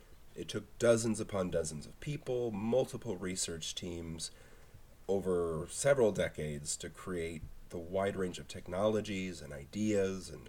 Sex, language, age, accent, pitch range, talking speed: male, English, 30-49, American, 80-105 Hz, 130 wpm